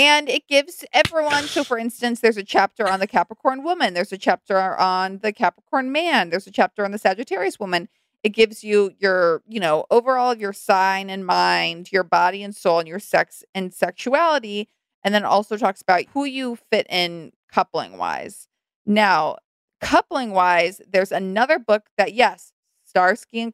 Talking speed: 175 wpm